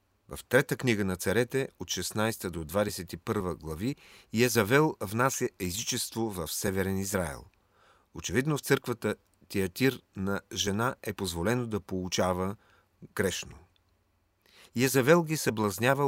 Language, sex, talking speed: Bulgarian, male, 110 wpm